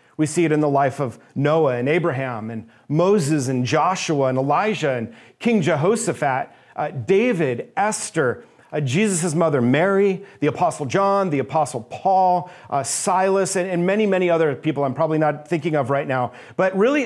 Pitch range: 145-185 Hz